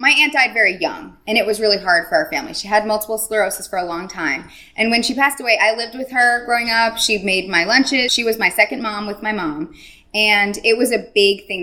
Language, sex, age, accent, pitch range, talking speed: English, female, 20-39, American, 185-255 Hz, 260 wpm